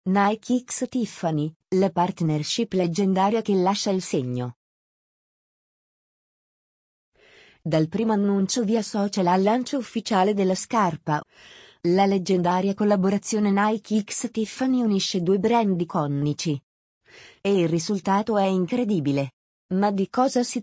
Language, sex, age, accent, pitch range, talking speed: Italian, female, 30-49, native, 180-220 Hz, 115 wpm